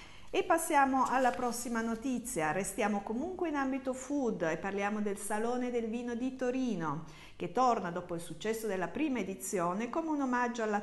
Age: 50-69